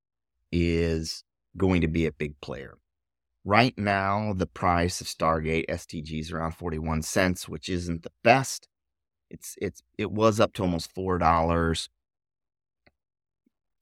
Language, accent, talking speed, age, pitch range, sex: English, American, 125 wpm, 30-49, 80-95 Hz, male